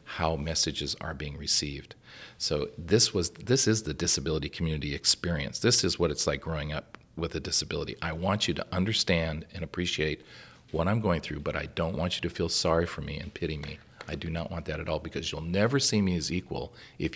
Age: 40-59